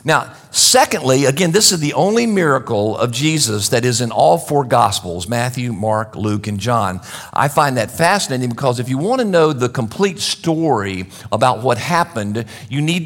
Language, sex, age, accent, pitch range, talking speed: English, male, 50-69, American, 115-160 Hz, 180 wpm